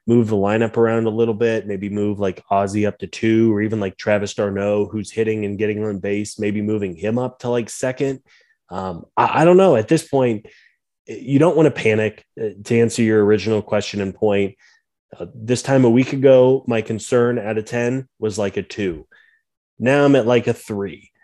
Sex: male